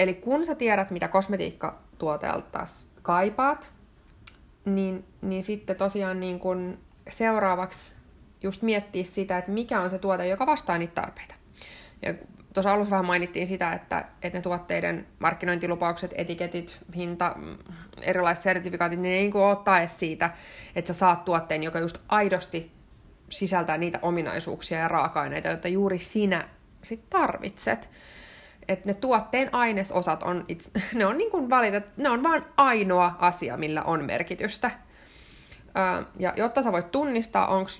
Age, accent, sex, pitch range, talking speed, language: 20-39, native, female, 175-205 Hz, 140 wpm, Finnish